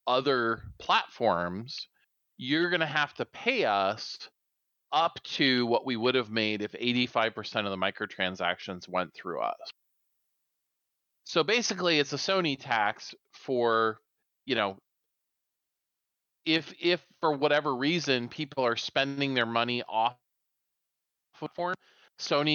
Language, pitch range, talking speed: English, 110-145 Hz, 120 wpm